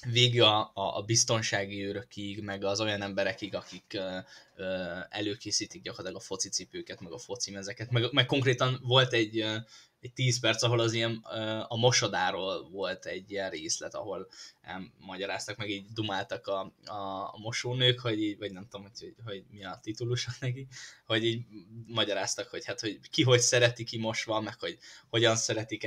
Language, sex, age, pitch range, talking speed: Hungarian, male, 10-29, 105-125 Hz, 165 wpm